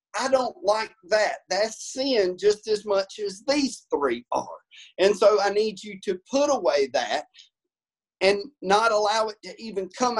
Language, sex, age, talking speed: English, male, 40-59, 170 wpm